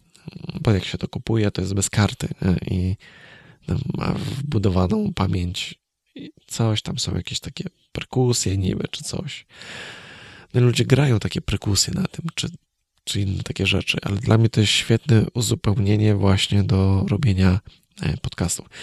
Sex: male